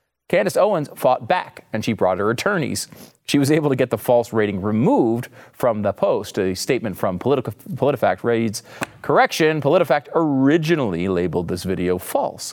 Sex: male